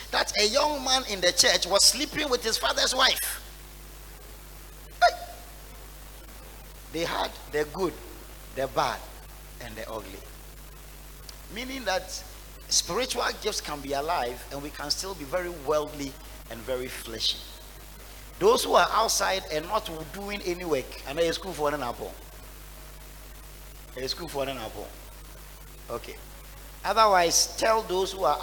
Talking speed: 130 wpm